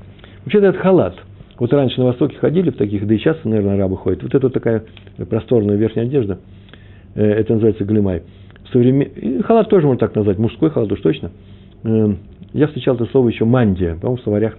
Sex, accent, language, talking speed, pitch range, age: male, native, Russian, 185 wpm, 100-125 Hz, 60-79